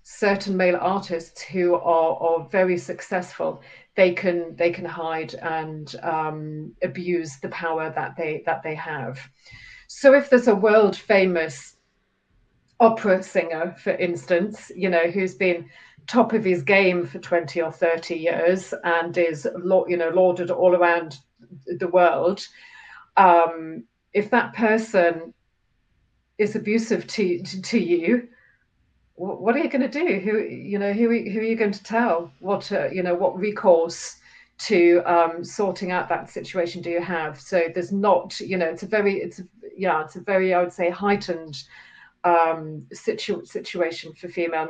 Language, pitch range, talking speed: English, 165-195 Hz, 160 wpm